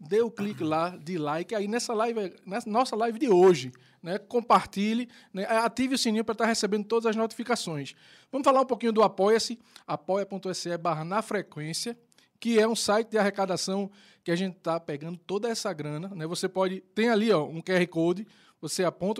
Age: 20-39